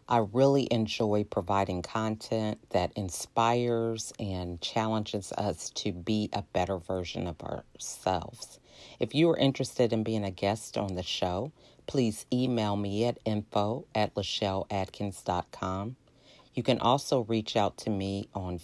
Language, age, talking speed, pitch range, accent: English, 40-59, 135 wpm, 100-120 Hz, American